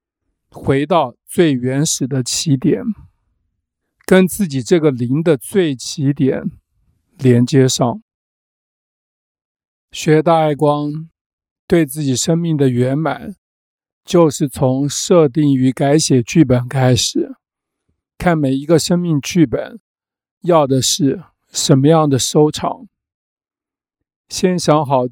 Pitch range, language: 130-165 Hz, Chinese